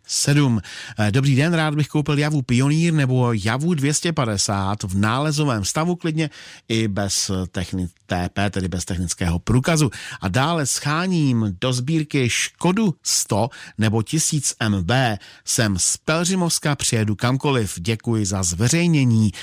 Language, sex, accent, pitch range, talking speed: Czech, male, native, 100-145 Hz, 125 wpm